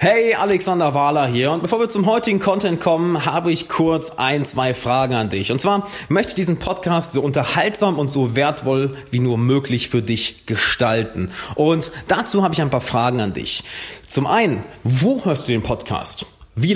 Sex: male